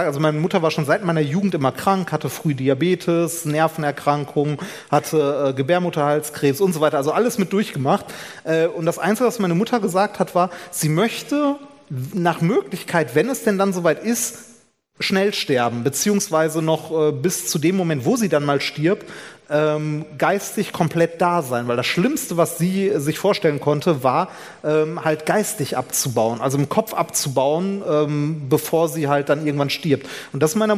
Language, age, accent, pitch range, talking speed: German, 30-49, German, 150-190 Hz, 175 wpm